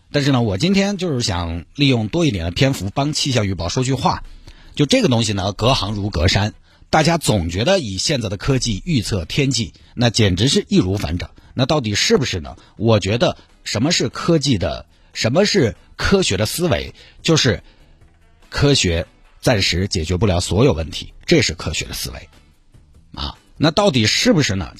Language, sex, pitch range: Chinese, male, 90-140 Hz